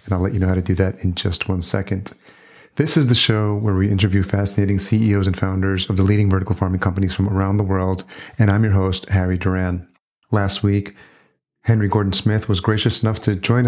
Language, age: English, 40-59